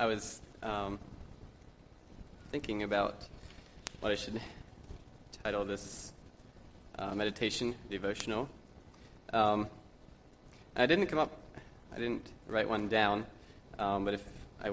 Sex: male